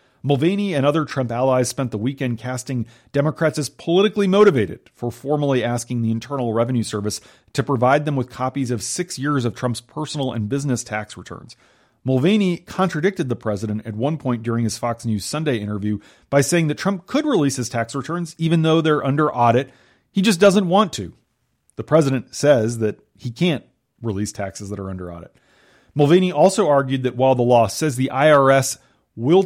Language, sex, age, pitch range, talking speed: English, male, 40-59, 115-150 Hz, 185 wpm